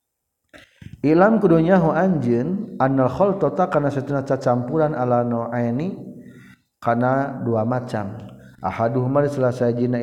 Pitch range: 115-145 Hz